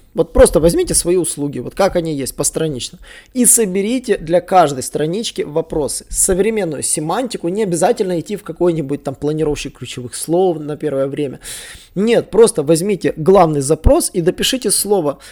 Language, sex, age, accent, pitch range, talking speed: Russian, male, 20-39, native, 160-205 Hz, 150 wpm